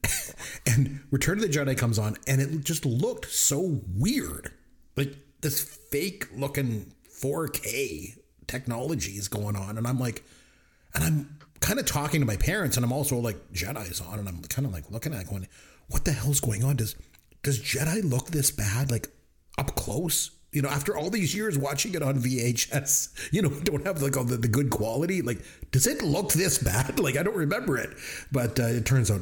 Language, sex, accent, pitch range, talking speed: English, male, American, 105-150 Hz, 205 wpm